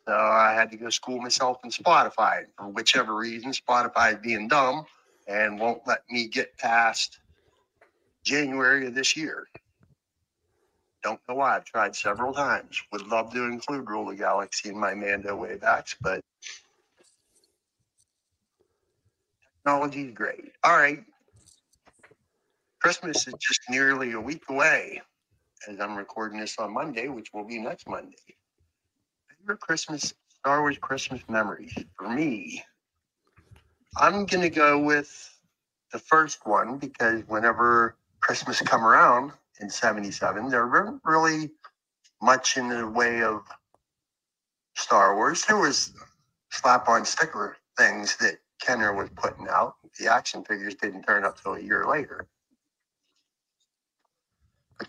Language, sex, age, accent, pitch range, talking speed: English, male, 60-79, American, 110-140 Hz, 135 wpm